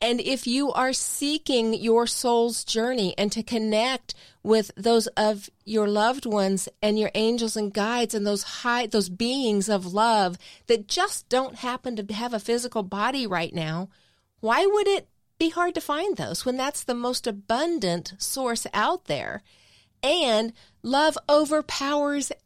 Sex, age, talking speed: female, 40-59, 160 wpm